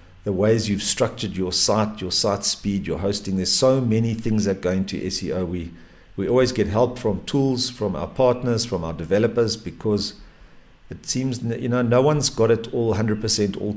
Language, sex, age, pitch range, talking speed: English, male, 50-69, 95-115 Hz, 190 wpm